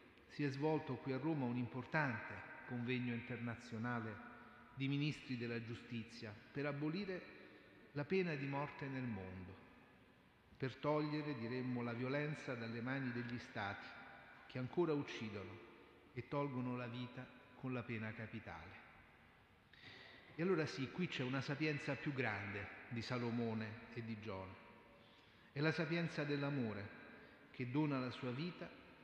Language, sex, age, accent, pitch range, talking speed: Italian, male, 40-59, native, 120-145 Hz, 135 wpm